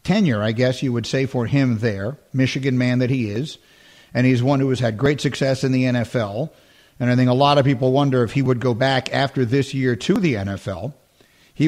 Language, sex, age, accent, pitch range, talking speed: English, male, 50-69, American, 125-155 Hz, 230 wpm